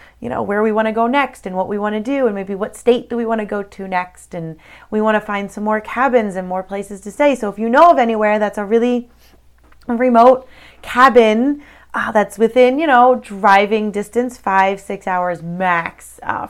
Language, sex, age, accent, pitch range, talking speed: English, female, 30-49, American, 190-230 Hz, 220 wpm